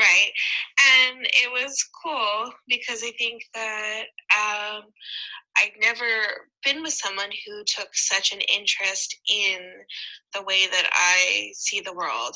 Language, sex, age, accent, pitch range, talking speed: English, female, 20-39, American, 190-250 Hz, 140 wpm